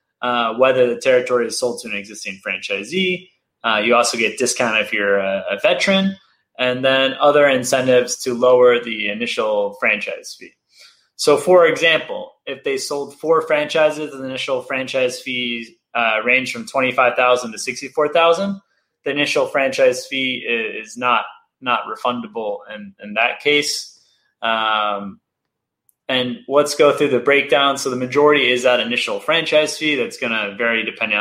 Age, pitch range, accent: 20-39, 120-155 Hz, American